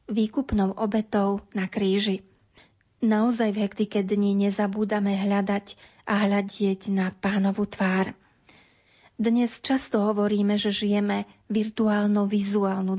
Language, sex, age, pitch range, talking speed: Slovak, female, 30-49, 195-215 Hz, 95 wpm